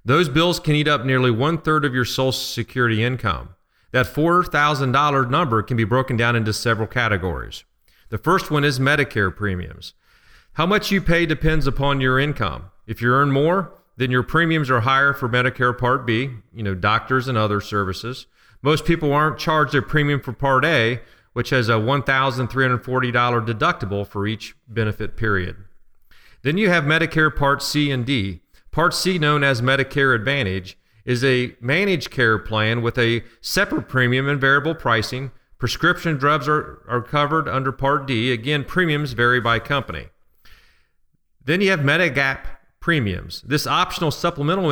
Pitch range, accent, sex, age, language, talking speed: 115-150 Hz, American, male, 40-59, English, 160 wpm